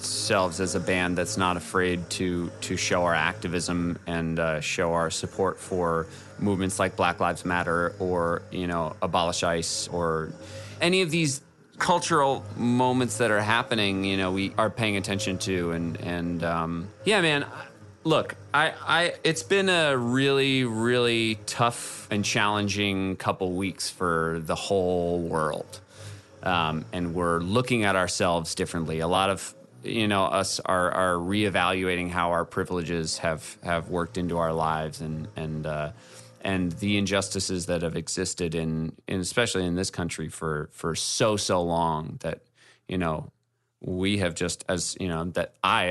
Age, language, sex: 30-49, English, male